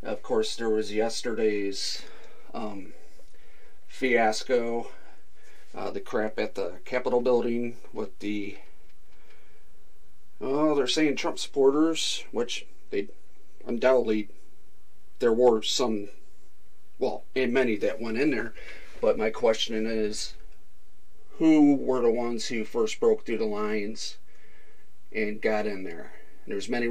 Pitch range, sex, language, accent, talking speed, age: 105-130 Hz, male, English, American, 120 wpm, 40-59